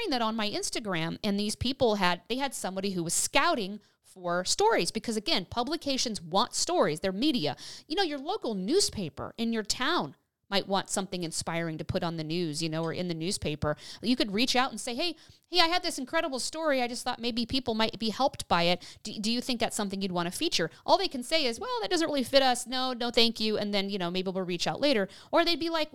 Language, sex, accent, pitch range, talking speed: English, female, American, 195-270 Hz, 245 wpm